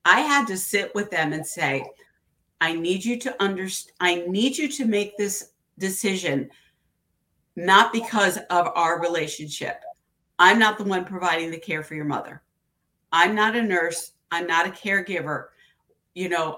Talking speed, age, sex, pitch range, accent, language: 165 wpm, 50-69, female, 165-205 Hz, American, English